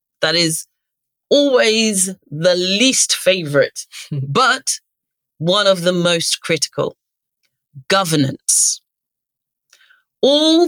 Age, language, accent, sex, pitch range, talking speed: 40-59, English, British, female, 180-250 Hz, 80 wpm